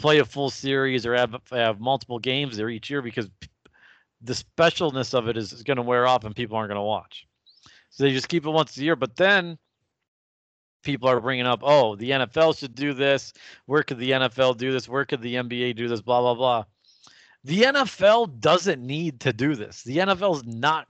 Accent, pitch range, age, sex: American, 120-145 Hz, 40-59, male